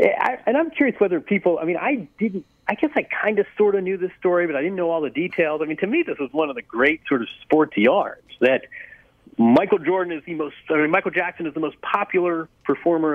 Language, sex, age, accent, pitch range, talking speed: English, male, 40-59, American, 155-205 Hz, 255 wpm